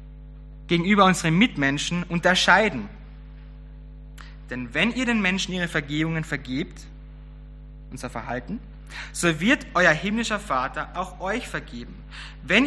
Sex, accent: male, German